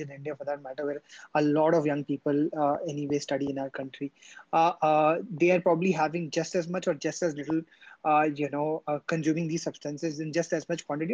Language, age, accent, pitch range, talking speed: English, 20-39, Indian, 150-175 Hz, 225 wpm